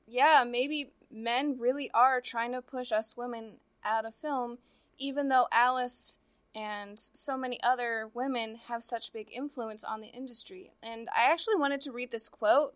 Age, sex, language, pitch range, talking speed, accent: 20-39, female, English, 225-285 Hz, 170 wpm, American